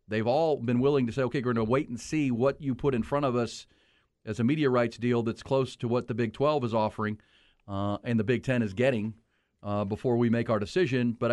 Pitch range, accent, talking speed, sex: 110-130 Hz, American, 255 wpm, male